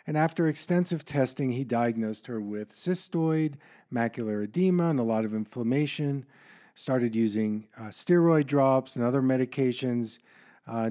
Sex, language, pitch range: male, English, 115-160 Hz